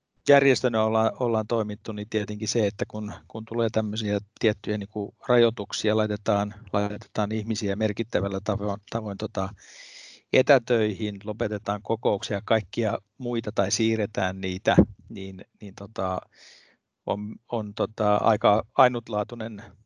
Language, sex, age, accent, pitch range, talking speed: Finnish, male, 50-69, native, 105-115 Hz, 115 wpm